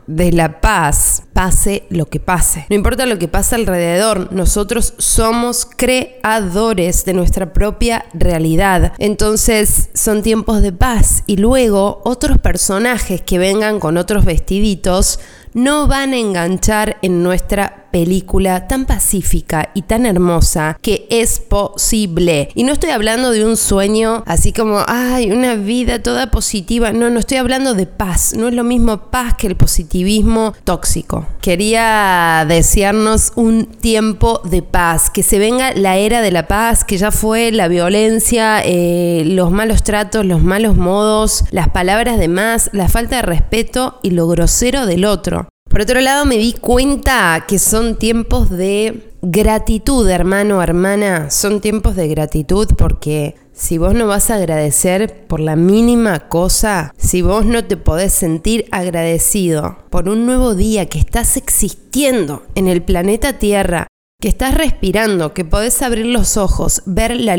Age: 20-39